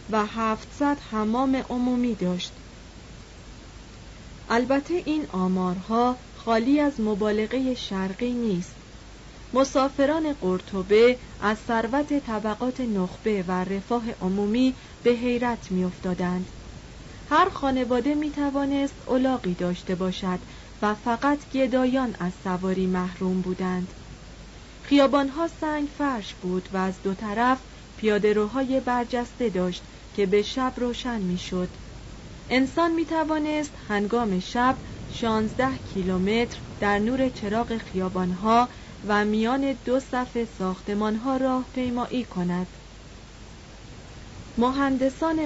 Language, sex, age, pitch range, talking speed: Persian, female, 40-59, 190-255 Hz, 100 wpm